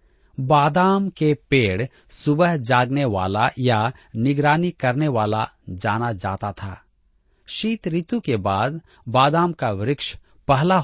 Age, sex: 40-59, male